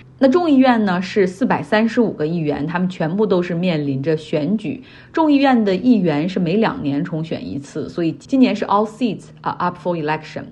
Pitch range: 155-210 Hz